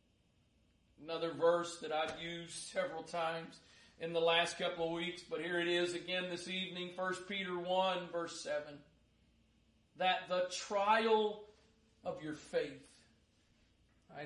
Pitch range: 170-205 Hz